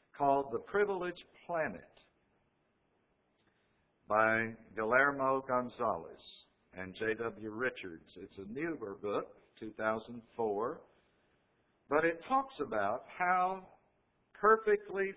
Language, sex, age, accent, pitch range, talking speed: English, male, 60-79, American, 115-155 Hz, 85 wpm